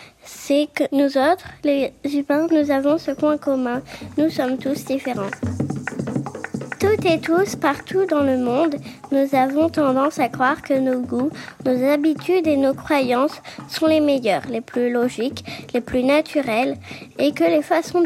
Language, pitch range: French, 255-300 Hz